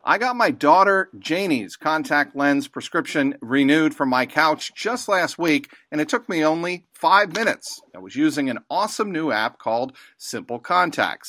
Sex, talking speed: male, 170 wpm